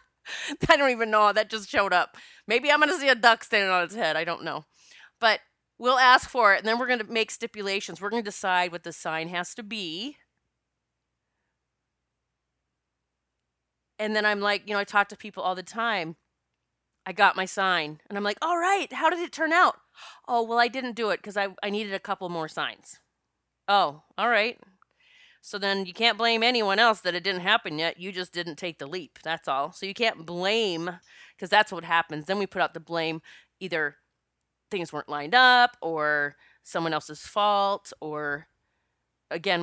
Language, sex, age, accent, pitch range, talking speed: English, female, 30-49, American, 165-230 Hz, 200 wpm